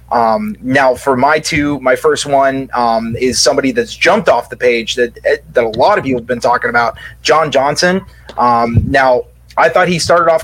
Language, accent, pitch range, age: English, American, 130-170 Hz, 30-49